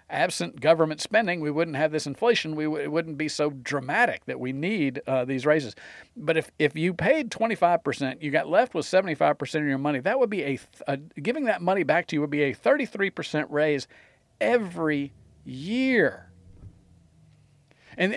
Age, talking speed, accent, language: 50-69, 180 wpm, American, English